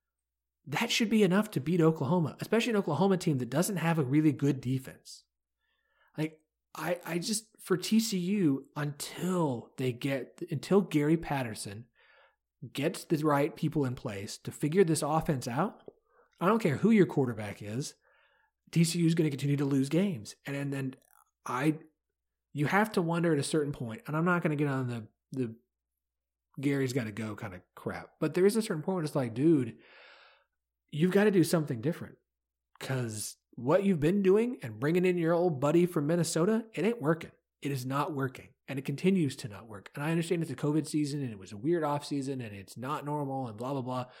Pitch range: 125-170 Hz